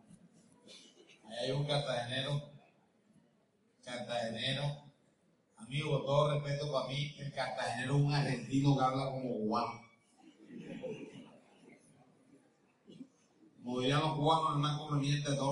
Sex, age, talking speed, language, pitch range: male, 30-49, 105 wpm, Spanish, 130-155 Hz